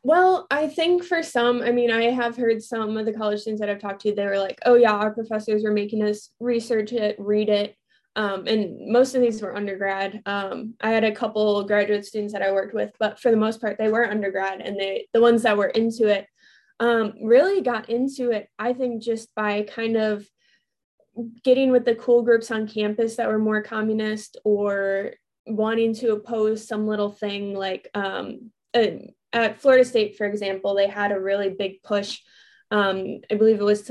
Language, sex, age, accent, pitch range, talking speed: English, female, 20-39, American, 205-235 Hz, 205 wpm